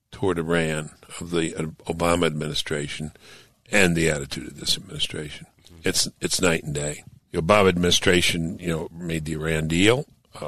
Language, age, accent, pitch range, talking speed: English, 60-79, American, 75-85 Hz, 155 wpm